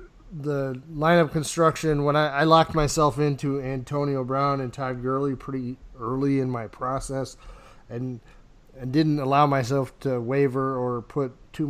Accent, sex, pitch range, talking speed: American, male, 125-150 Hz, 150 wpm